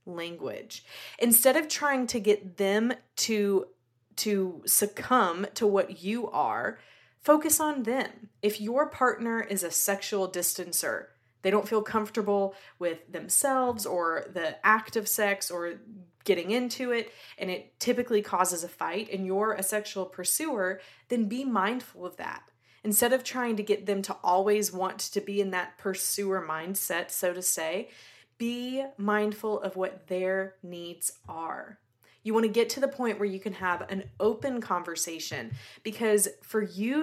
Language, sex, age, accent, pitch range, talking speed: English, female, 20-39, American, 185-225 Hz, 155 wpm